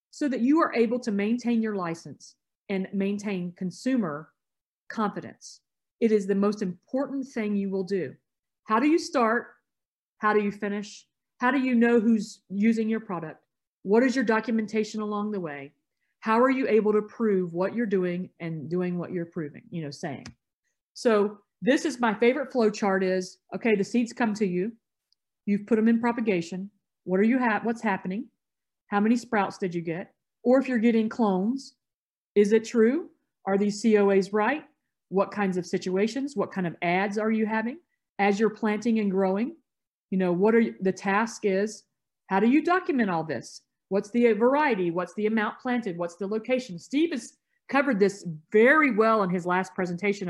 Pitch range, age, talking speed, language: 190-235 Hz, 50-69, 185 wpm, English